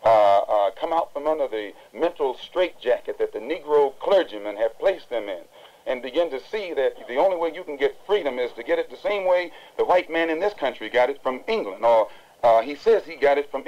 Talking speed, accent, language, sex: 235 wpm, American, English, male